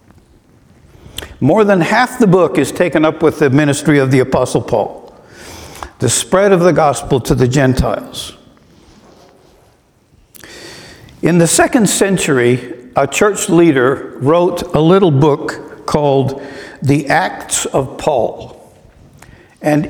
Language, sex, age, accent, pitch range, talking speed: English, male, 60-79, American, 140-175 Hz, 120 wpm